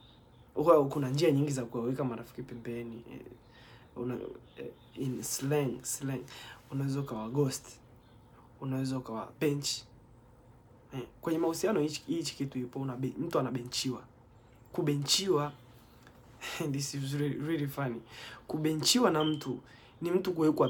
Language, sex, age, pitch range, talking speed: Swahili, male, 20-39, 125-145 Hz, 100 wpm